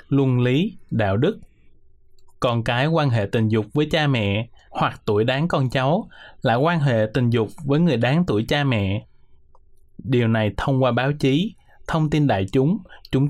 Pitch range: 115-145 Hz